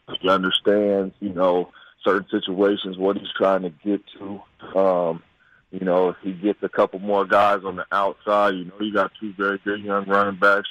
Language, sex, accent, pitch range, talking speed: English, male, American, 100-115 Hz, 195 wpm